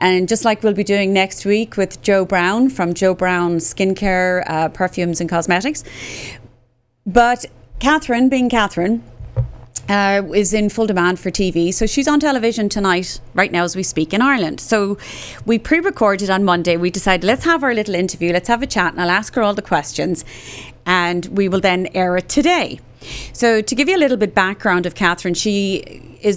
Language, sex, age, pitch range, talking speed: English, female, 30-49, 175-220 Hz, 195 wpm